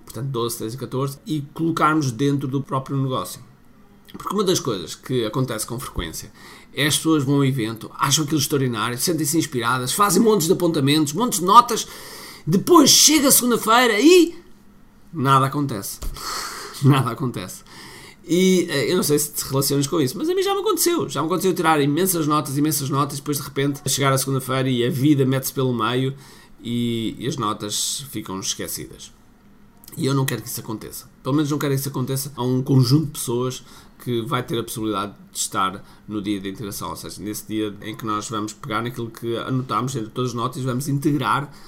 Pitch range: 120-155 Hz